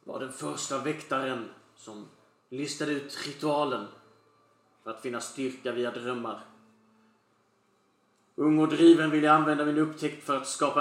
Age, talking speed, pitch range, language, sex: 30-49, 135 wpm, 120-145 Hz, Swedish, male